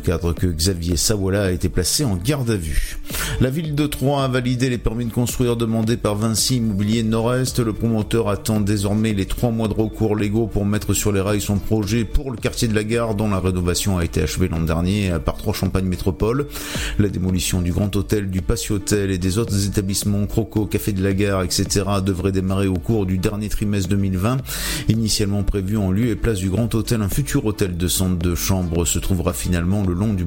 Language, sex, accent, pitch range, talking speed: French, male, French, 90-110 Hz, 215 wpm